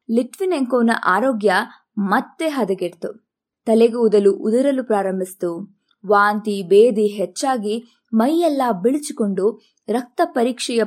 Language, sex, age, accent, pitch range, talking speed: Kannada, female, 20-39, native, 215-310 Hz, 85 wpm